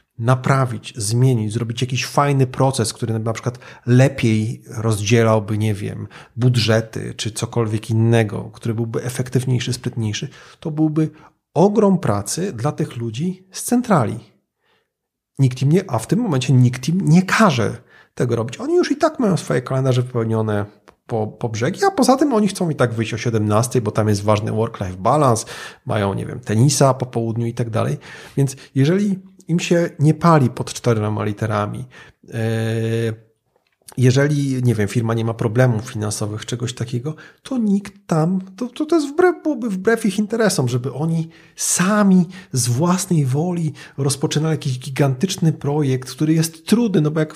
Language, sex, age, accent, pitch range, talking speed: Polish, male, 40-59, native, 115-160 Hz, 155 wpm